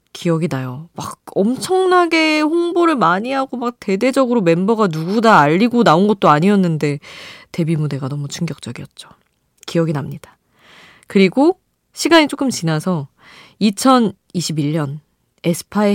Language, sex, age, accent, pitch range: Korean, female, 20-39, native, 160-235 Hz